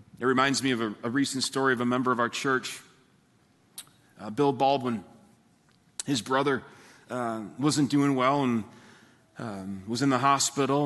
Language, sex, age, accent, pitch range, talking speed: English, male, 40-59, American, 110-140 Hz, 160 wpm